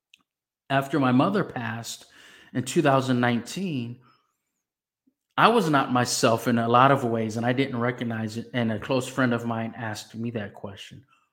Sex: male